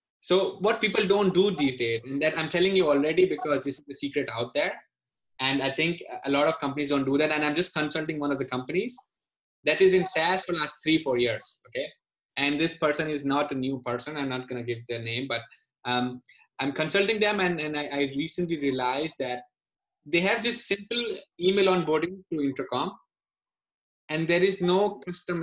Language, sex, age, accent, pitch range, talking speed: English, male, 20-39, Indian, 135-180 Hz, 210 wpm